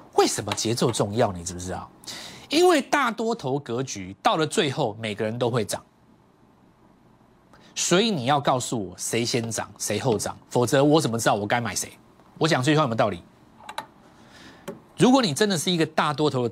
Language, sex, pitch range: Chinese, male, 120-195 Hz